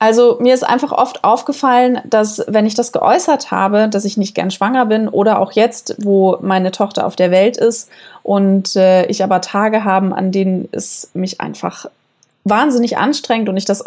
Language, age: German, 20-39